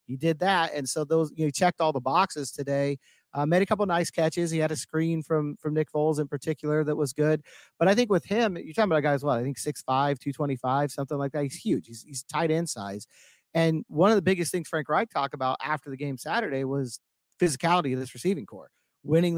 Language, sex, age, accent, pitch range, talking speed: English, male, 40-59, American, 145-175 Hz, 250 wpm